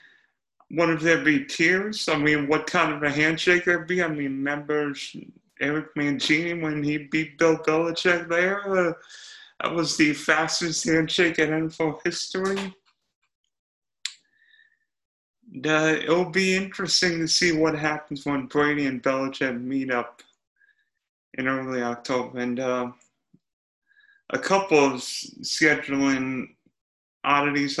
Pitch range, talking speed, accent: 145-190 Hz, 125 wpm, American